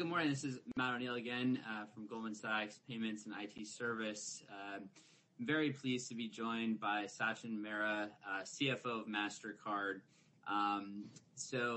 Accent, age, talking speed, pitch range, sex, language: American, 20-39, 160 wpm, 105-130 Hz, male, English